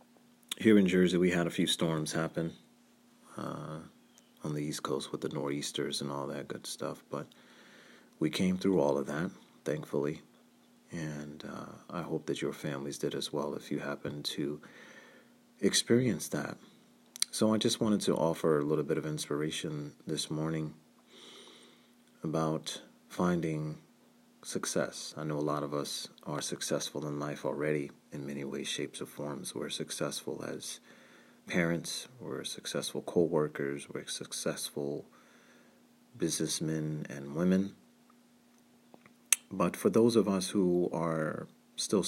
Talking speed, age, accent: 140 wpm, 30-49, American